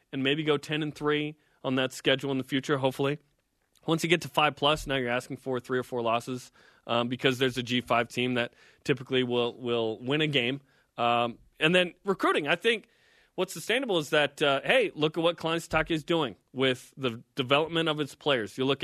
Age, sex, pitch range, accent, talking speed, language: 30-49, male, 130-160 Hz, American, 220 wpm, English